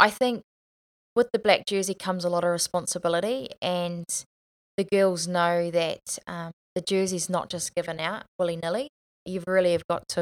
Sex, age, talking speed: female, 20-39, 170 wpm